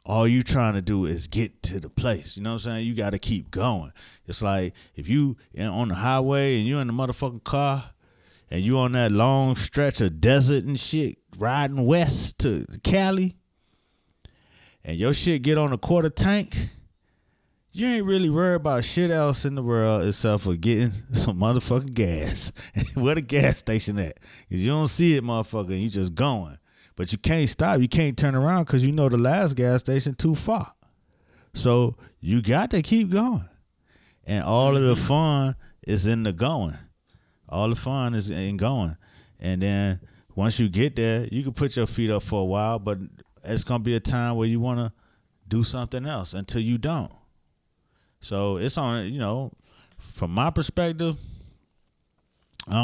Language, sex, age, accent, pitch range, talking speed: English, male, 30-49, American, 100-135 Hz, 185 wpm